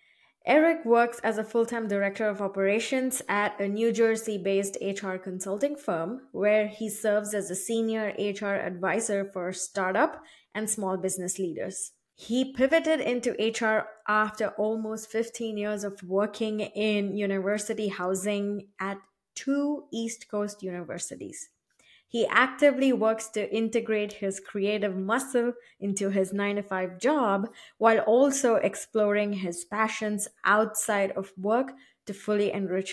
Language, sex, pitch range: English, female, 200-230 Hz